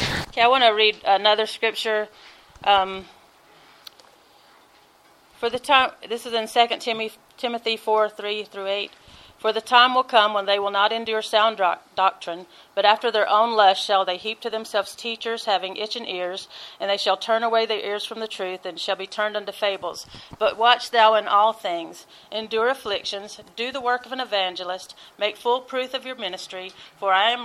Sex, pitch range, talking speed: female, 190-225 Hz, 190 wpm